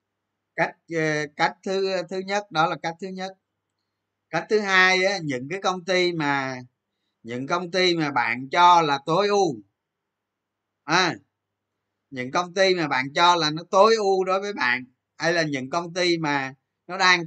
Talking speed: 175 wpm